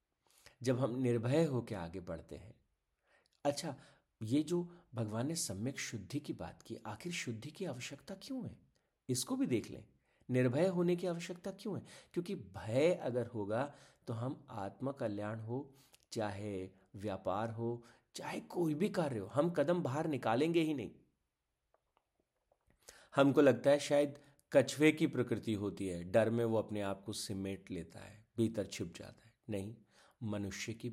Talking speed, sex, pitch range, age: 155 wpm, male, 100-140 Hz, 50-69